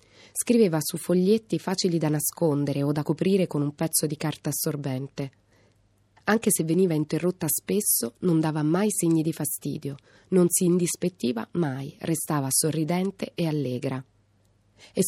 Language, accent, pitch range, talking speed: Italian, native, 140-175 Hz, 140 wpm